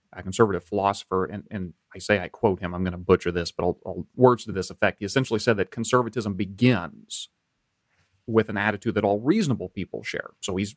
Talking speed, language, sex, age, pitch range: 210 wpm, English, male, 30-49, 95-115 Hz